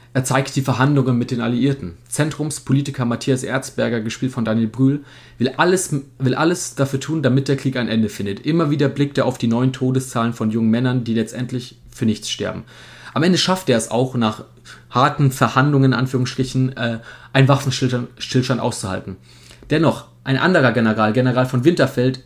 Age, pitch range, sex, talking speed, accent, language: 30-49, 115-135 Hz, male, 175 wpm, German, German